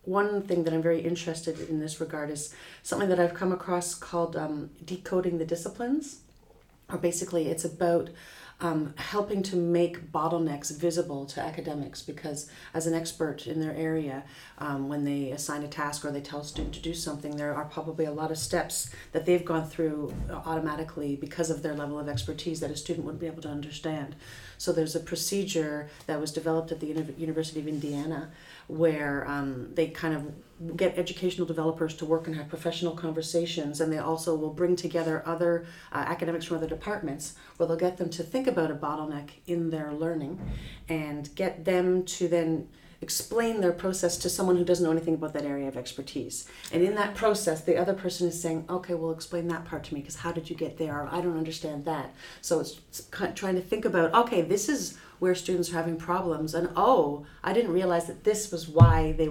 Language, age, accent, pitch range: English, 40-59, American, 150-175 Hz